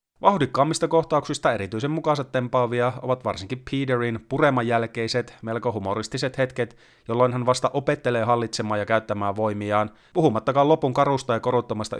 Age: 30-49